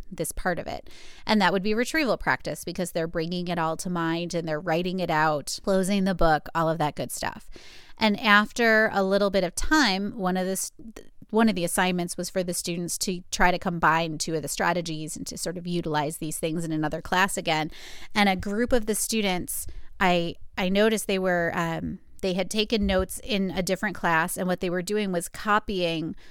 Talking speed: 210 wpm